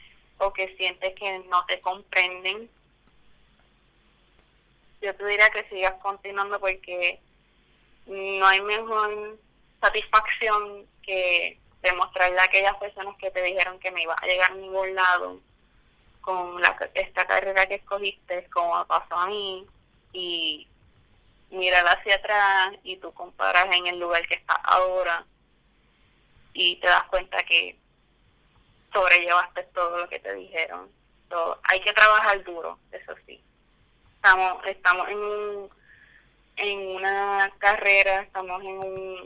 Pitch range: 180-200 Hz